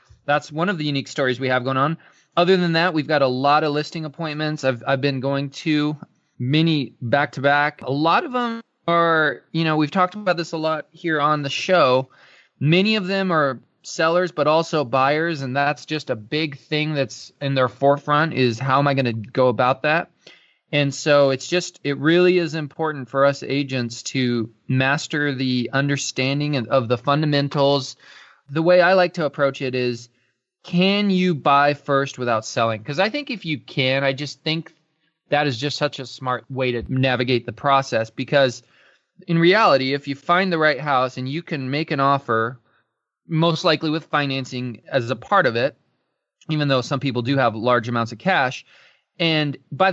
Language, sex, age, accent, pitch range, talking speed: English, male, 20-39, American, 130-160 Hz, 190 wpm